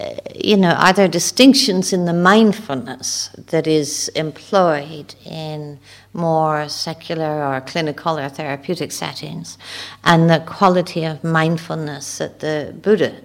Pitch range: 140-170 Hz